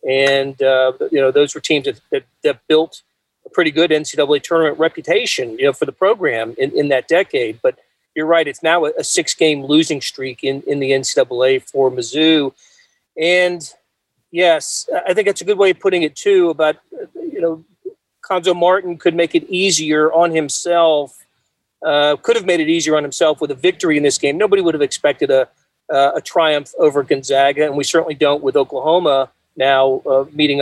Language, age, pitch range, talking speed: English, 40-59, 145-200 Hz, 190 wpm